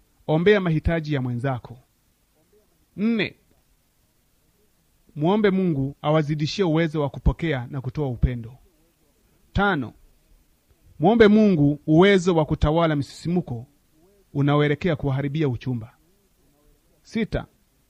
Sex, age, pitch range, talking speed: male, 30-49, 135-180 Hz, 85 wpm